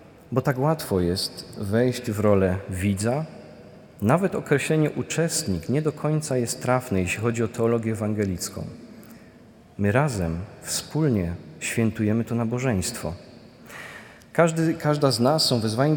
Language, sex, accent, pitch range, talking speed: Polish, male, native, 105-135 Hz, 120 wpm